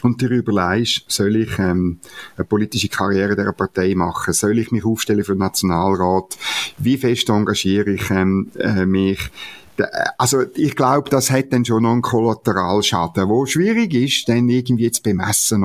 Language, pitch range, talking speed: German, 105-135 Hz, 165 wpm